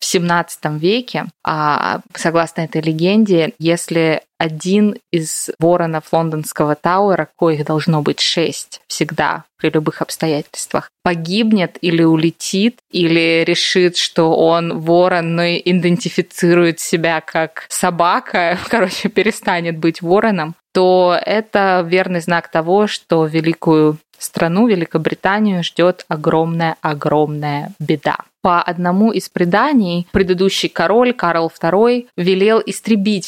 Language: Russian